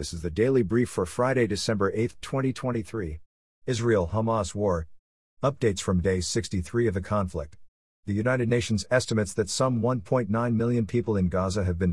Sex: male